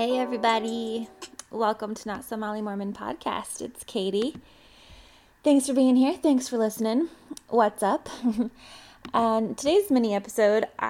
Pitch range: 200-235 Hz